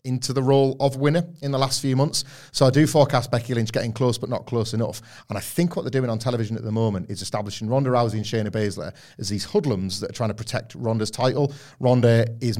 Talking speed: 250 wpm